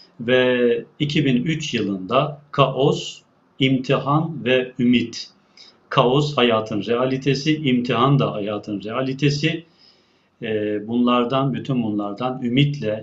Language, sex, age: Turkish, male, 40-59